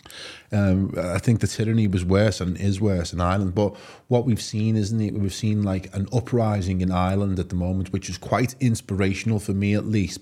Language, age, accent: English, 20-39, British